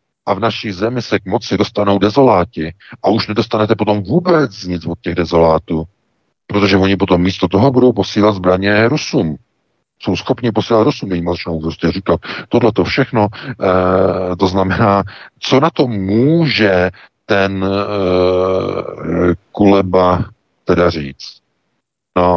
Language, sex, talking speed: Czech, male, 135 wpm